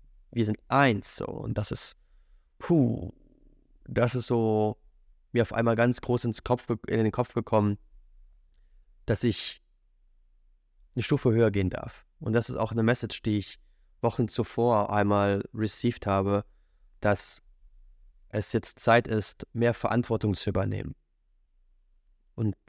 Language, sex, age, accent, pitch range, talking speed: German, male, 20-39, German, 100-115 Hz, 140 wpm